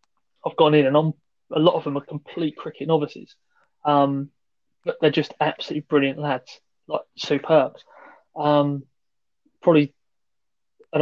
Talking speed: 135 wpm